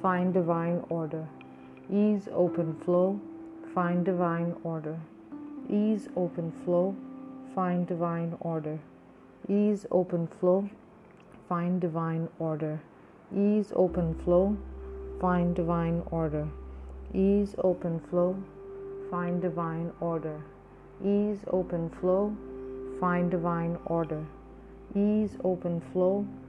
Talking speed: 95 wpm